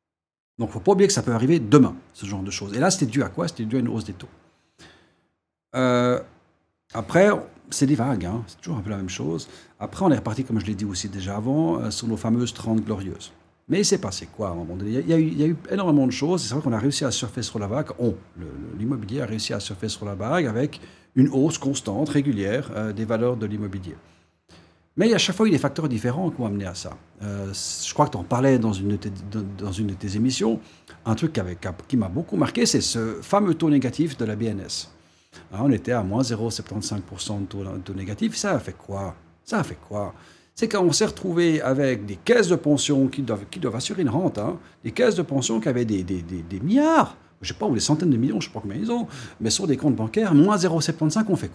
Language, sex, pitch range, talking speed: French, male, 100-145 Hz, 265 wpm